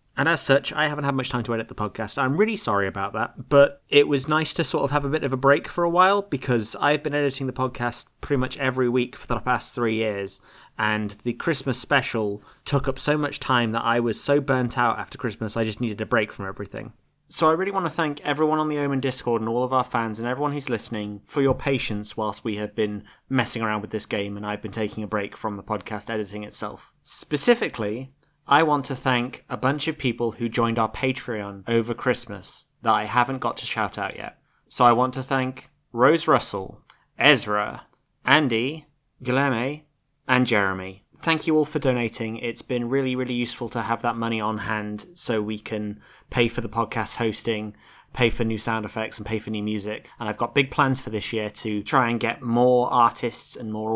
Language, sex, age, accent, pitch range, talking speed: English, male, 30-49, British, 110-135 Hz, 220 wpm